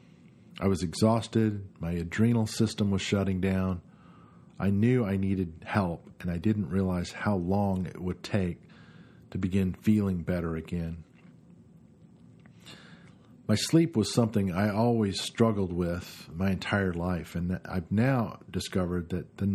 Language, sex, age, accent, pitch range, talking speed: English, male, 50-69, American, 90-105 Hz, 140 wpm